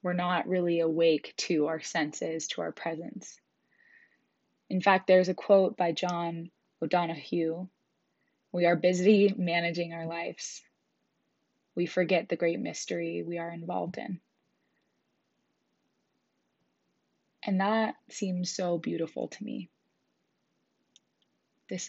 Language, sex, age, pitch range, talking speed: English, female, 20-39, 165-185 Hz, 110 wpm